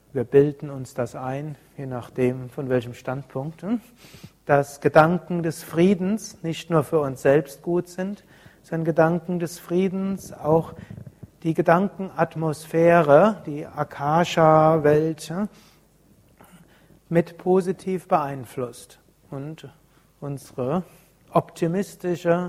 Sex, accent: male, German